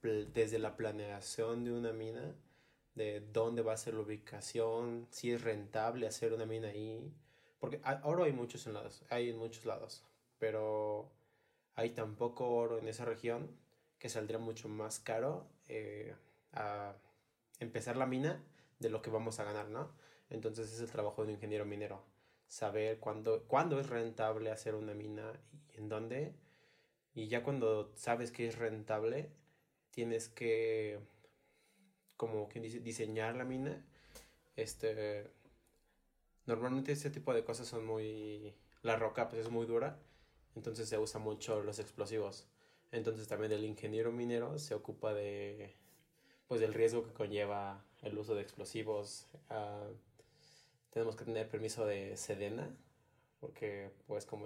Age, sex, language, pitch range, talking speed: 20-39, male, Spanish, 110-120 Hz, 145 wpm